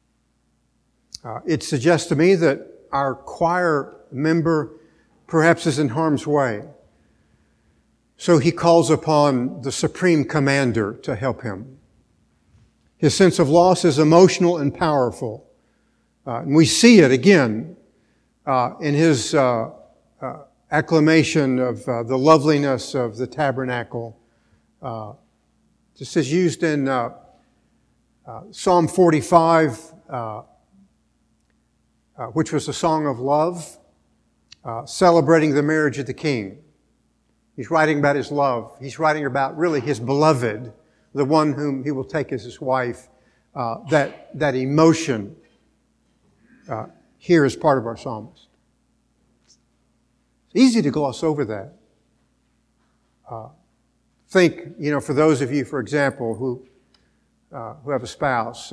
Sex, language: male, English